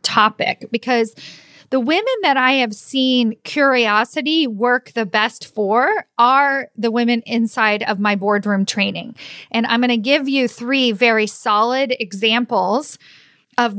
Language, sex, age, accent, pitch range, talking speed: English, female, 40-59, American, 215-255 Hz, 140 wpm